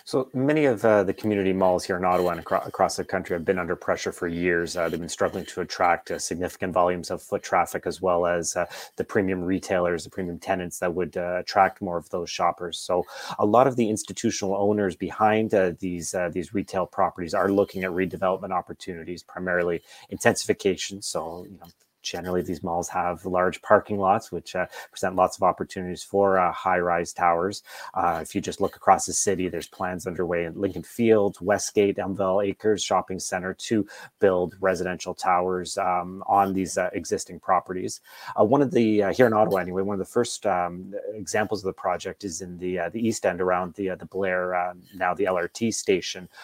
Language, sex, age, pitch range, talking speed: English, male, 30-49, 90-100 Hz, 200 wpm